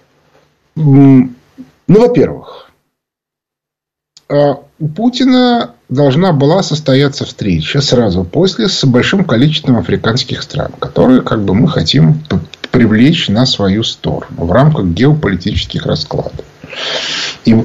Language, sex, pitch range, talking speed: Russian, male, 105-155 Hz, 100 wpm